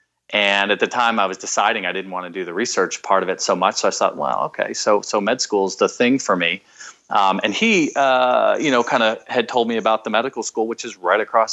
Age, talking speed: 30-49, 270 wpm